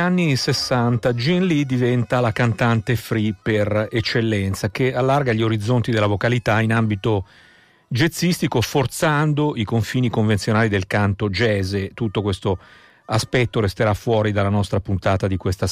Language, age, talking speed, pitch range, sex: Italian, 50-69, 140 wpm, 105-135 Hz, male